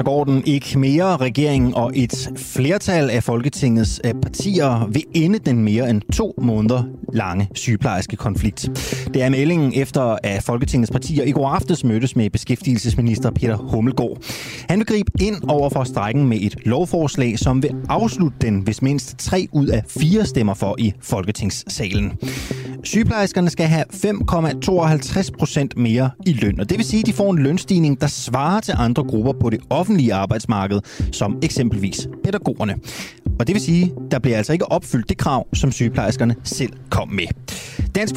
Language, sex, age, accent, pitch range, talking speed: Danish, male, 30-49, native, 120-160 Hz, 170 wpm